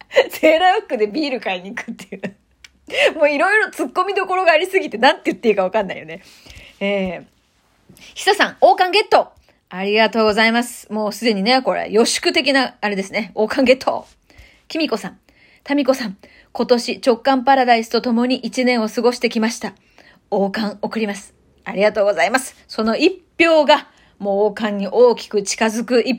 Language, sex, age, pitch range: Japanese, female, 30-49, 220-325 Hz